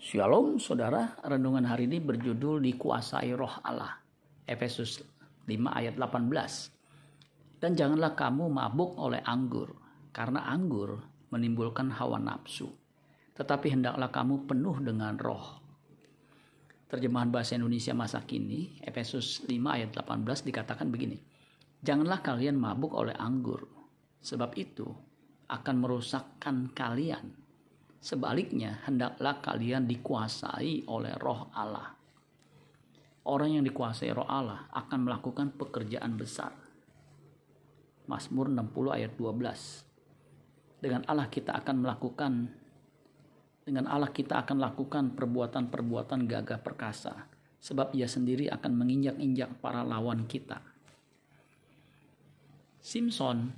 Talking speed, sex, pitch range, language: 105 wpm, male, 125-145 Hz, Indonesian